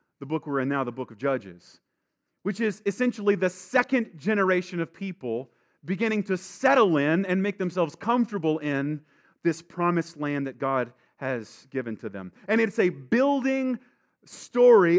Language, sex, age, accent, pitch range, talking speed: English, male, 30-49, American, 155-220 Hz, 160 wpm